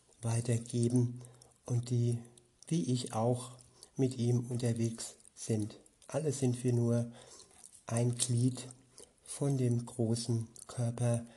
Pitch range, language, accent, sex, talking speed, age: 120-130 Hz, German, German, male, 105 wpm, 60-79